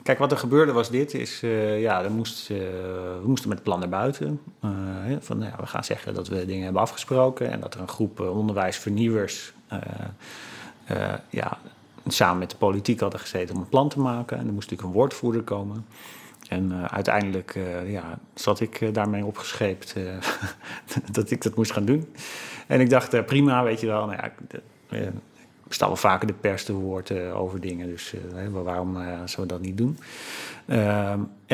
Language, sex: Dutch, male